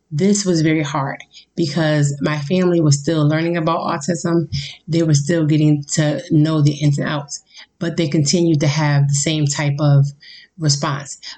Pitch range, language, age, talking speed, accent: 145-170 Hz, English, 30-49, 170 wpm, American